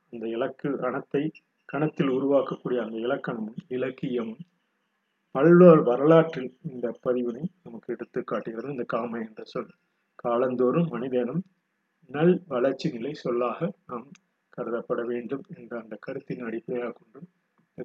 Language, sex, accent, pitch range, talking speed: Tamil, male, native, 125-170 Hz, 110 wpm